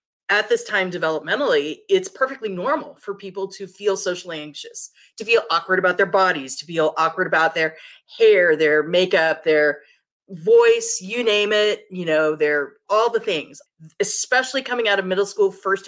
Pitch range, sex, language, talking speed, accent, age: 170-245 Hz, female, English, 170 wpm, American, 30-49